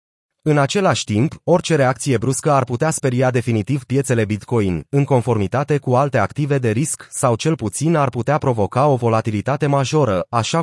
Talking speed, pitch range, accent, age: 165 wpm, 120-155 Hz, native, 30-49